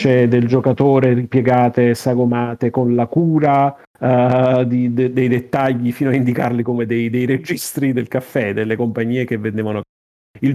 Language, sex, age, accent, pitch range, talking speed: Italian, male, 40-59, native, 115-135 Hz, 130 wpm